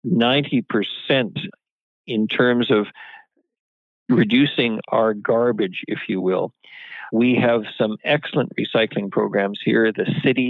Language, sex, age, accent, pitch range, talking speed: English, male, 50-69, American, 115-145 Hz, 110 wpm